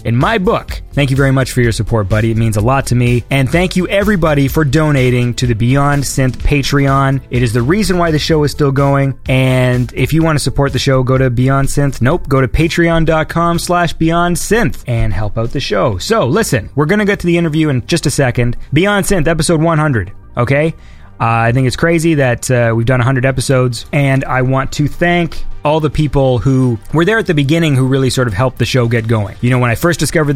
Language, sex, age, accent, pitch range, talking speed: English, male, 20-39, American, 120-155 Hz, 235 wpm